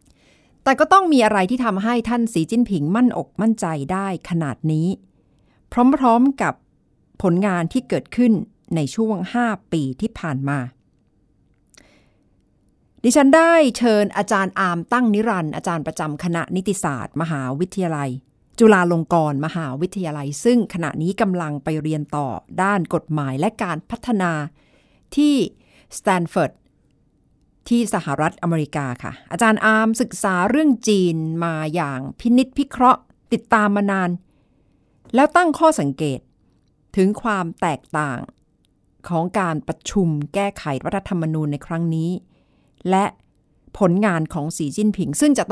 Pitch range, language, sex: 155-220 Hz, Thai, female